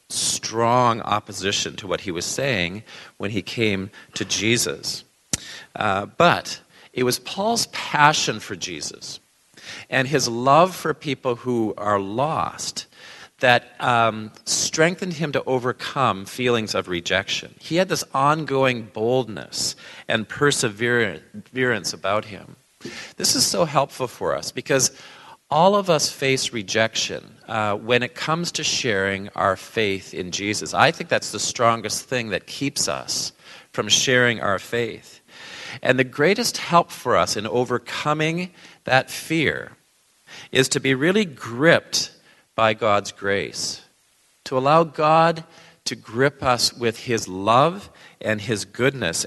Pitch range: 105-145 Hz